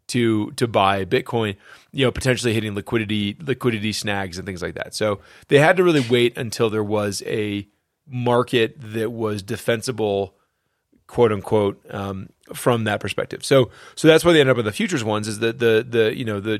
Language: English